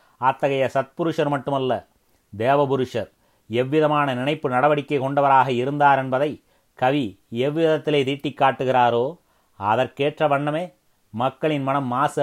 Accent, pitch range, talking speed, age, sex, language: native, 125-145 Hz, 90 wpm, 30-49, male, Tamil